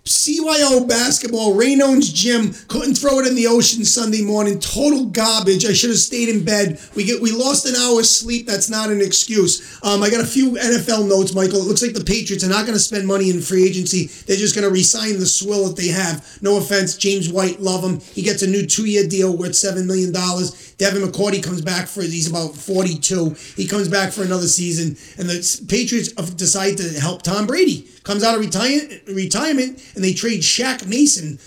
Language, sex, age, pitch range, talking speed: English, male, 30-49, 180-210 Hz, 210 wpm